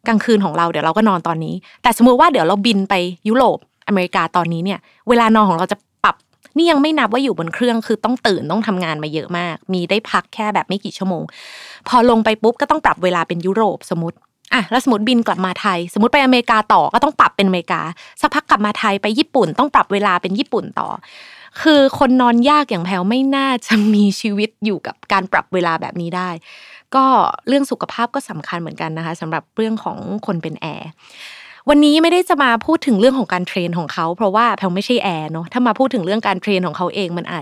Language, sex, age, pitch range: Thai, female, 20-39, 185-245 Hz